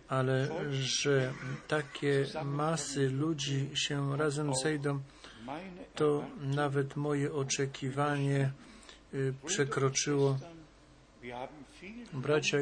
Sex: male